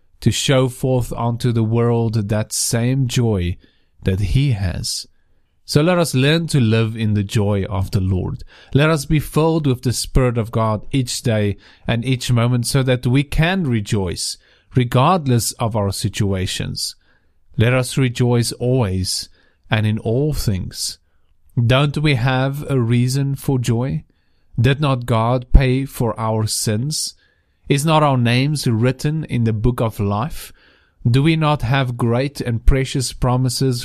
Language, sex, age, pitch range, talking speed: English, male, 40-59, 110-135 Hz, 155 wpm